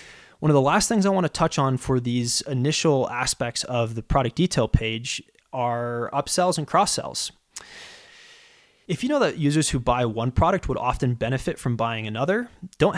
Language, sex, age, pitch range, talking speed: English, male, 20-39, 125-175 Hz, 180 wpm